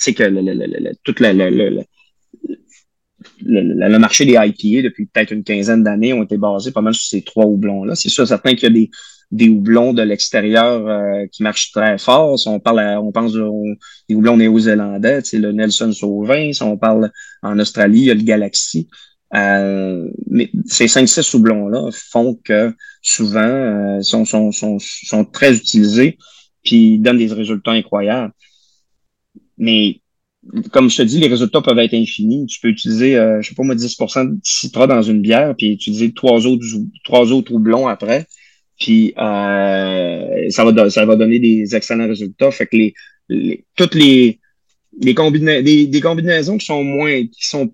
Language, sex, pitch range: French, male, 105-135 Hz